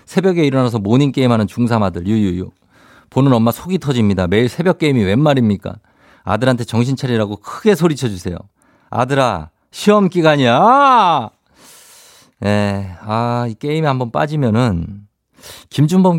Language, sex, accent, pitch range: Korean, male, native, 100-135 Hz